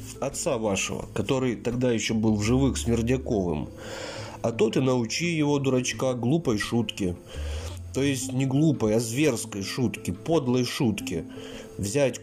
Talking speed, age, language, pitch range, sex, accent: 130 wpm, 30-49, Russian, 110-130 Hz, male, native